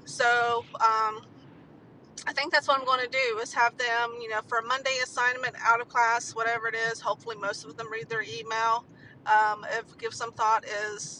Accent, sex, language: American, female, English